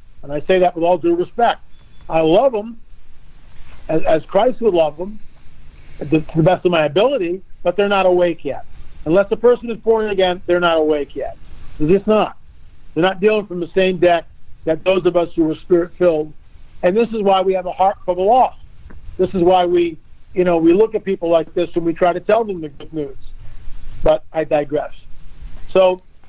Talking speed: 210 wpm